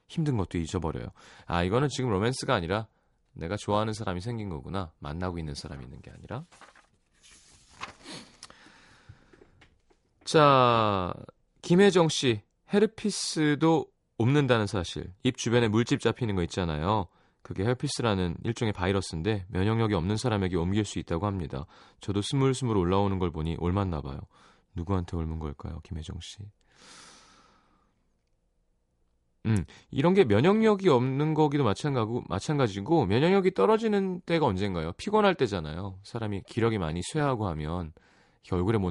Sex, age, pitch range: male, 30-49, 90-135 Hz